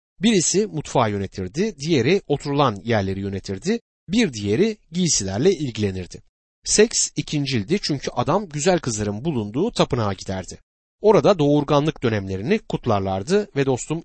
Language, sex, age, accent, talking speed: Turkish, male, 60-79, native, 110 wpm